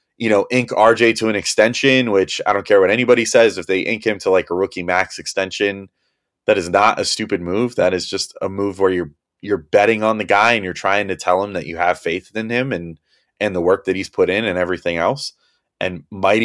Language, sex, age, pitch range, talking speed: English, male, 30-49, 95-125 Hz, 245 wpm